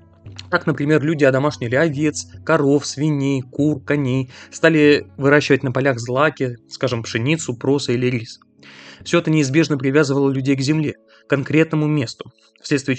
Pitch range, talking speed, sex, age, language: 130-155 Hz, 140 wpm, male, 20-39, Russian